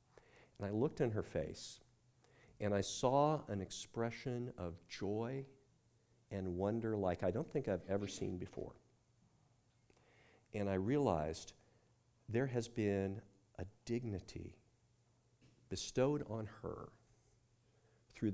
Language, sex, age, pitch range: English, male, 50-69, 90-120 Hz